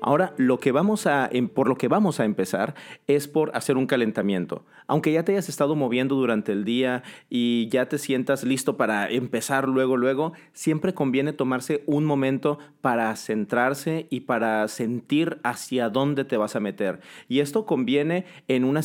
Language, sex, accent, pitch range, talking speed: Spanish, male, Mexican, 120-150 Hz, 175 wpm